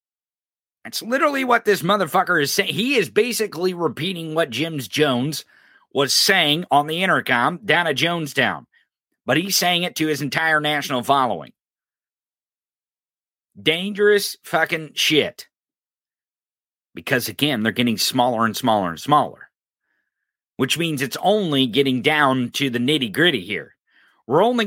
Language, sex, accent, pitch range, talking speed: English, male, American, 145-200 Hz, 135 wpm